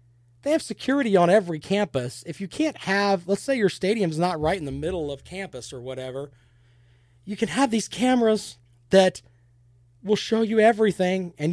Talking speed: 175 wpm